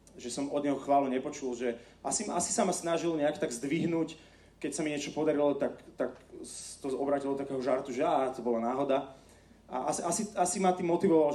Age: 30-49